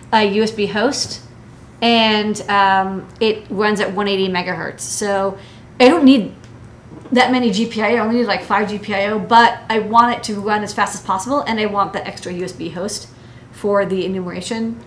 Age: 30-49